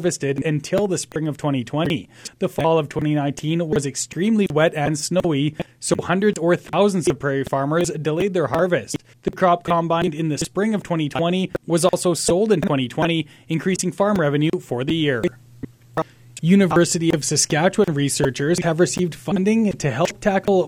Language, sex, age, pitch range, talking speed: English, male, 20-39, 150-190 Hz, 155 wpm